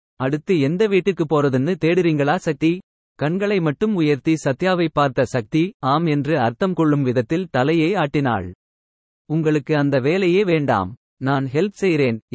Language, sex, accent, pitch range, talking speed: Tamil, male, native, 135-175 Hz, 125 wpm